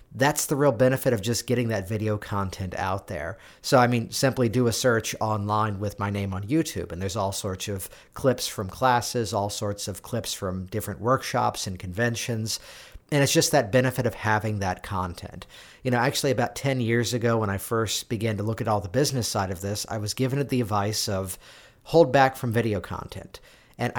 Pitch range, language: 105-135 Hz, English